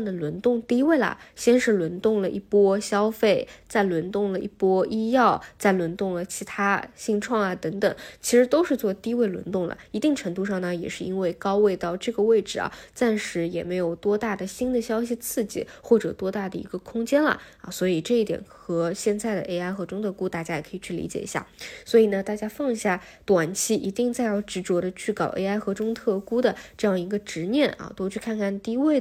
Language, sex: Chinese, female